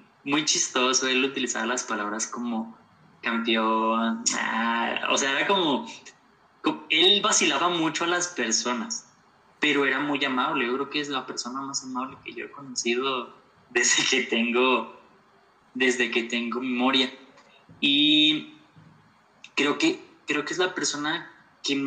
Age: 20-39